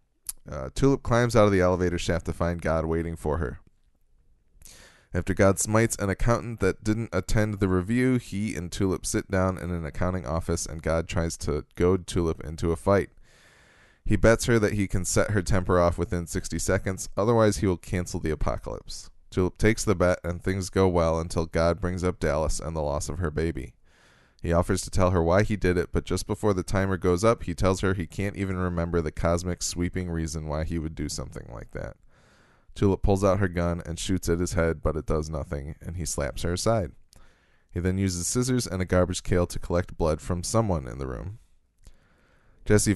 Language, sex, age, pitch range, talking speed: English, male, 20-39, 80-100 Hz, 210 wpm